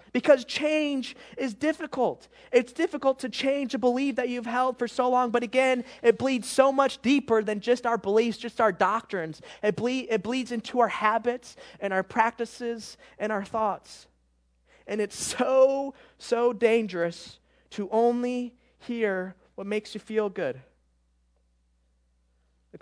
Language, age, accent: English, 20-39, American